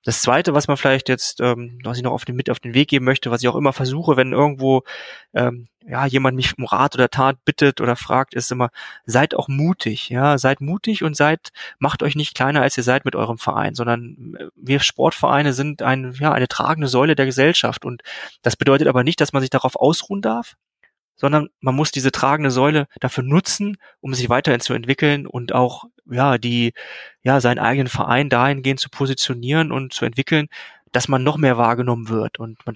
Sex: male